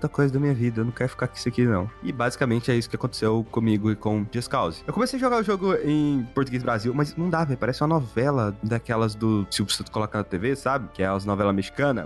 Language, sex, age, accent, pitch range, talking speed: Portuguese, male, 20-39, Brazilian, 110-160 Hz, 255 wpm